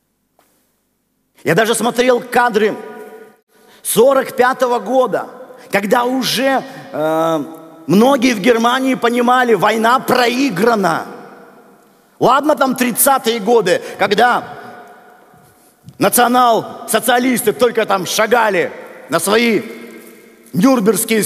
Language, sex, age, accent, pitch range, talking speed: Russian, male, 50-69, native, 205-250 Hz, 75 wpm